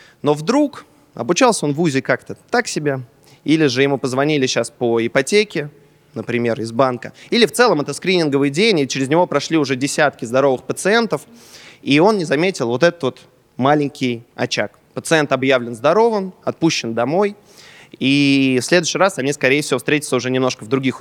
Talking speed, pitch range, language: 170 wpm, 125-165 Hz, Russian